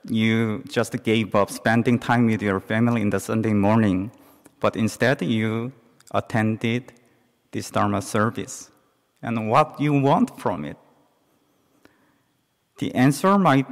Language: English